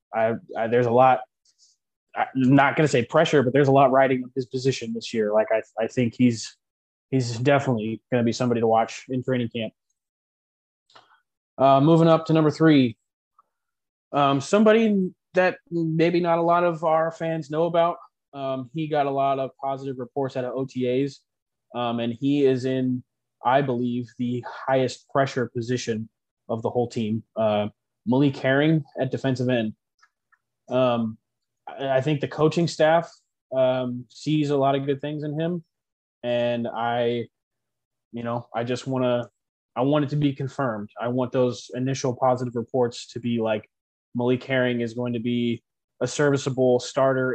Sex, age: male, 20-39